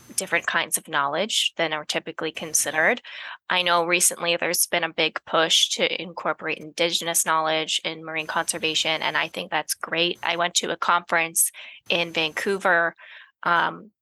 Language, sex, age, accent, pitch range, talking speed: English, female, 20-39, American, 165-195 Hz, 155 wpm